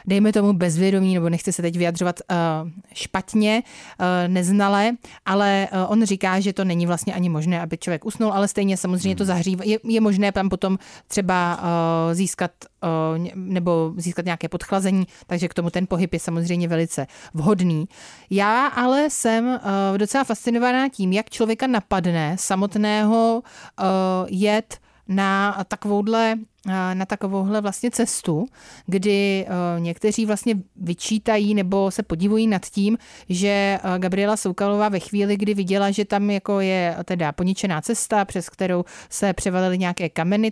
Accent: native